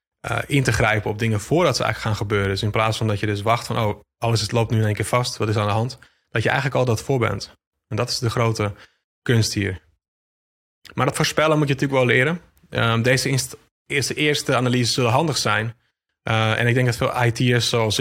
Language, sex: Dutch, male